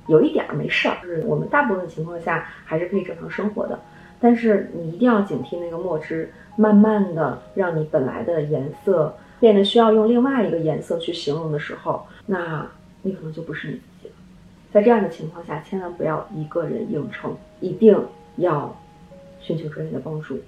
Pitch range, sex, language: 160-205 Hz, female, Chinese